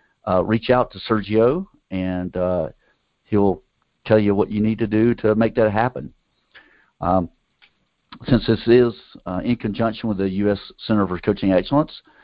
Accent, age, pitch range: American, 50-69, 95-115 Hz